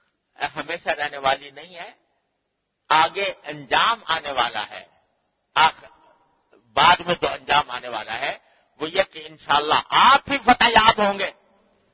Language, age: English, 50-69